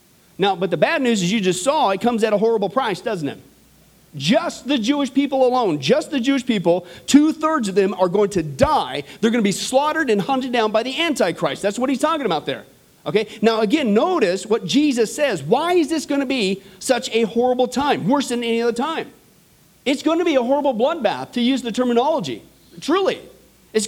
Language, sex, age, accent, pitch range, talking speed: English, male, 40-59, American, 210-285 Hz, 215 wpm